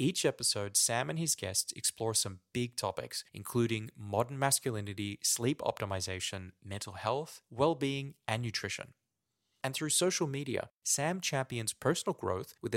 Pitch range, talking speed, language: 105-145 Hz, 135 wpm, English